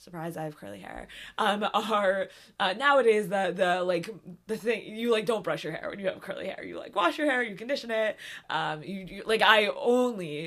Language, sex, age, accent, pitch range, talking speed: English, female, 20-39, American, 170-220 Hz, 225 wpm